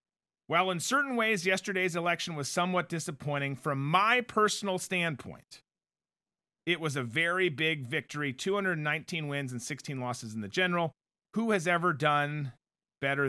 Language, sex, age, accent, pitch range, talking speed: English, male, 40-59, American, 145-190 Hz, 145 wpm